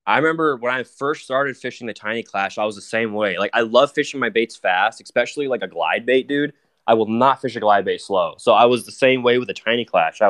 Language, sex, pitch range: English, male, 110-135 Hz